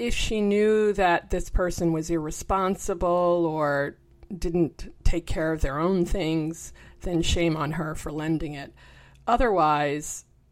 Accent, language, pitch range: American, English, 155-195 Hz